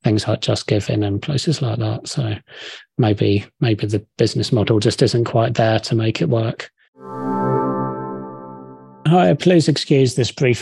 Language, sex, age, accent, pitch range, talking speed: English, male, 30-49, British, 120-155 Hz, 155 wpm